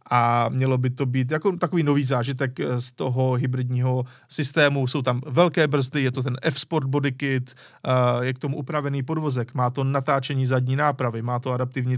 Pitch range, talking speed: 125-145 Hz, 175 wpm